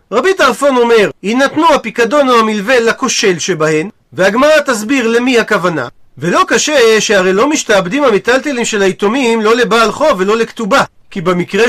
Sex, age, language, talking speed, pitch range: male, 40-59, Hebrew, 145 wpm, 195-265 Hz